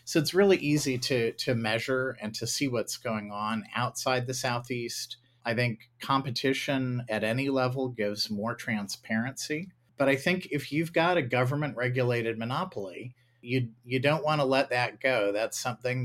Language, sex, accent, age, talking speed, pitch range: English, male, American, 40-59, 170 wpm, 110-130 Hz